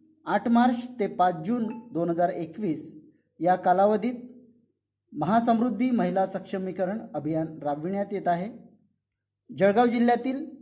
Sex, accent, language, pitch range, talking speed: male, native, Marathi, 175-235 Hz, 100 wpm